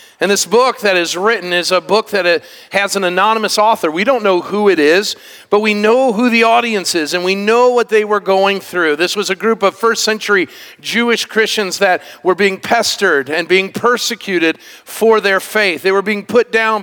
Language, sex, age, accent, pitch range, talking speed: English, male, 50-69, American, 180-220 Hz, 215 wpm